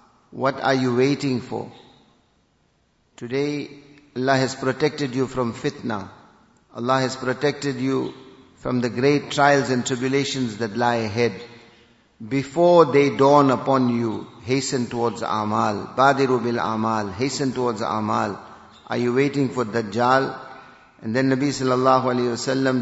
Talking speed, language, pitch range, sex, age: 130 wpm, English, 125-150 Hz, male, 50-69